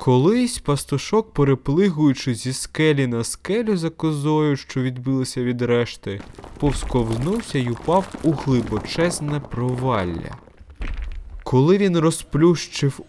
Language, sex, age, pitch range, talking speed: Ukrainian, male, 20-39, 120-155 Hz, 100 wpm